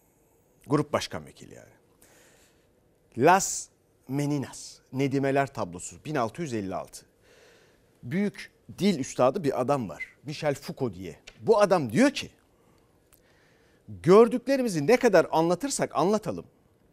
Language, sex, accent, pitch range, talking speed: Turkish, male, native, 135-215 Hz, 95 wpm